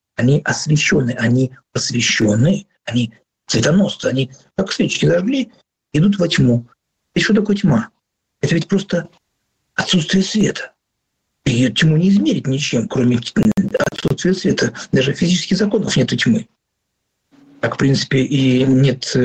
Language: Russian